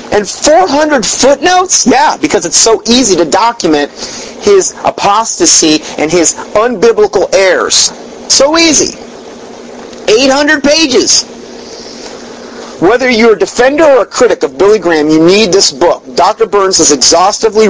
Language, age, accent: English, 40-59, American